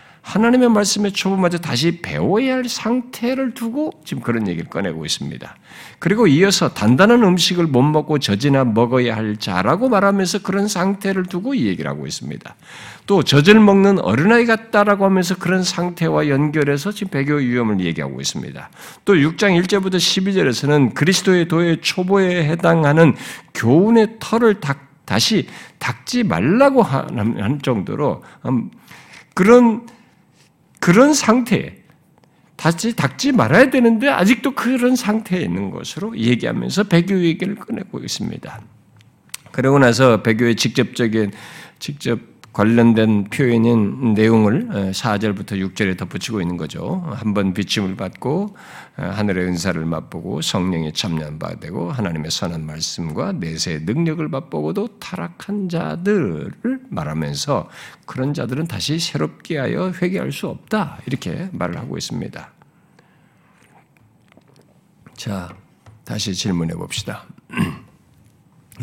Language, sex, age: Korean, male, 60-79